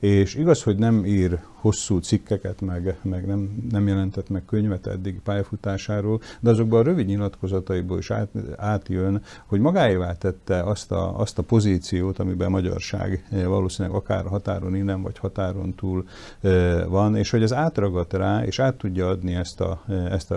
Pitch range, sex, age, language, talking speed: 95-105 Hz, male, 50-69, Hungarian, 170 wpm